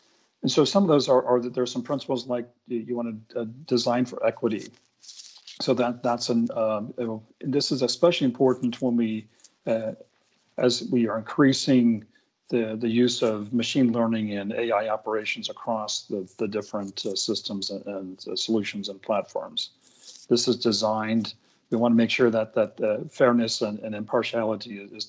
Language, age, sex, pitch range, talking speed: English, 40-59, male, 110-125 Hz, 170 wpm